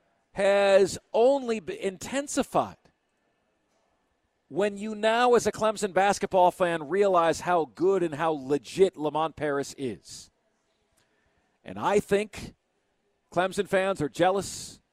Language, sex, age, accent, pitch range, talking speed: English, male, 50-69, American, 150-190 Hz, 110 wpm